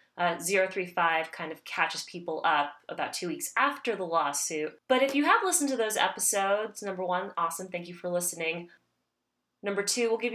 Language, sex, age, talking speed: English, female, 20-39, 185 wpm